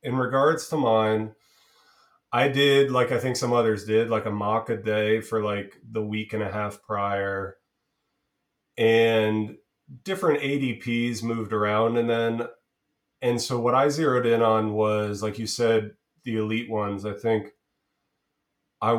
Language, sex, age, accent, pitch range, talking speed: English, male, 30-49, American, 105-120 Hz, 155 wpm